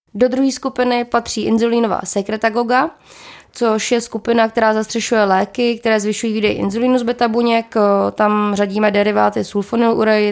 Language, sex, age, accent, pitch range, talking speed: Czech, female, 20-39, native, 210-240 Hz, 130 wpm